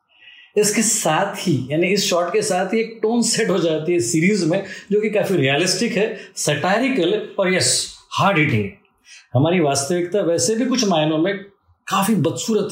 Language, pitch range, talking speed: Hindi, 165-210 Hz, 155 wpm